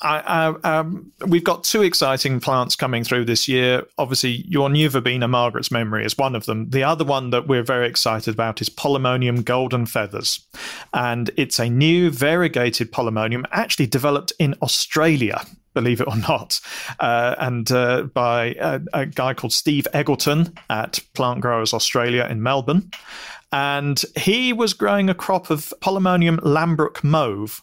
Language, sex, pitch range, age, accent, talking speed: English, male, 125-165 Hz, 40-59, British, 155 wpm